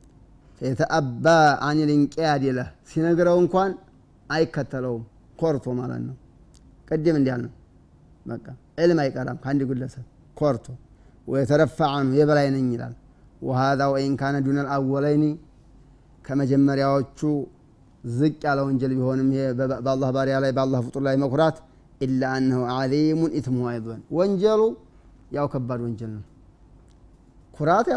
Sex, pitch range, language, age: male, 125-150 Hz, Amharic, 30-49